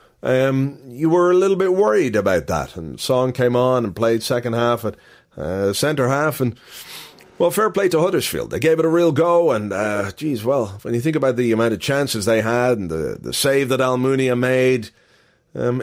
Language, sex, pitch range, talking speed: English, male, 110-140 Hz, 210 wpm